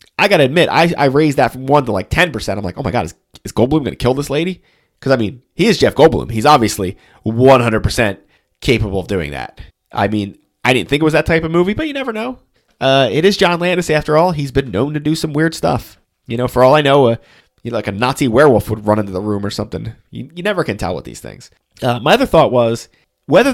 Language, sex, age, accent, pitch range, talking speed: English, male, 30-49, American, 105-160 Hz, 260 wpm